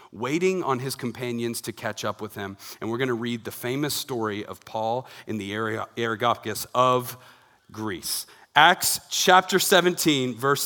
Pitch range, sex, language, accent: 125-185 Hz, male, English, American